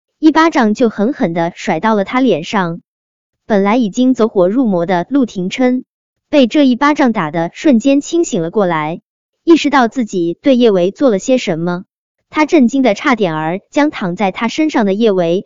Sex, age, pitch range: male, 20-39, 185-275 Hz